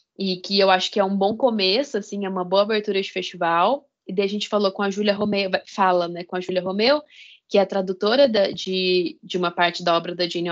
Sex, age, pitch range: female, 10-29, 190-235 Hz